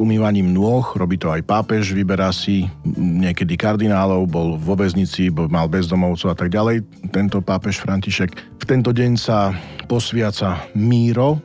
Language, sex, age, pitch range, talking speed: Slovak, male, 40-59, 90-110 Hz, 140 wpm